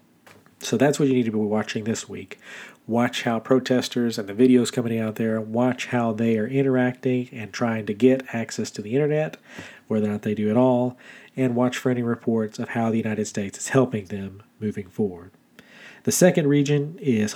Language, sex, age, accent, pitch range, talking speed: English, male, 40-59, American, 110-135 Hz, 200 wpm